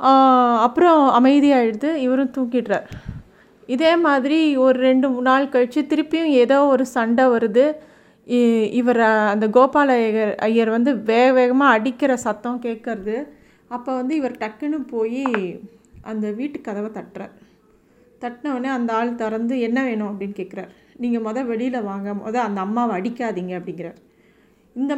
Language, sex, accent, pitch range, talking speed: Tamil, female, native, 215-260 Hz, 125 wpm